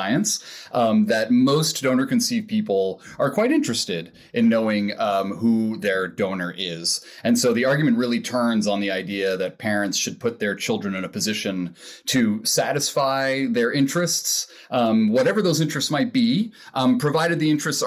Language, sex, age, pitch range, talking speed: English, male, 30-49, 100-160 Hz, 160 wpm